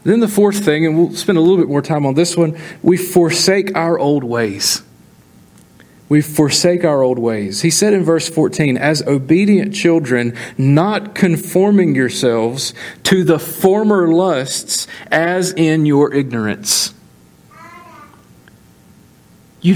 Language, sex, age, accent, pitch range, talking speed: English, male, 40-59, American, 145-210 Hz, 135 wpm